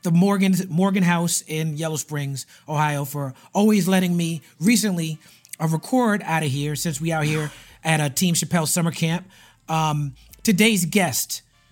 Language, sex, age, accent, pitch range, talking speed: English, male, 30-49, American, 155-195 Hz, 155 wpm